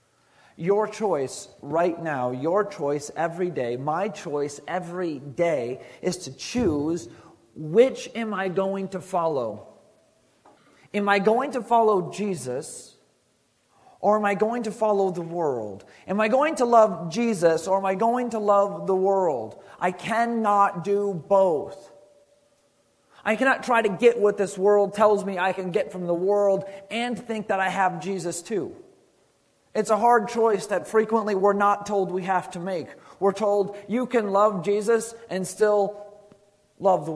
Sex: male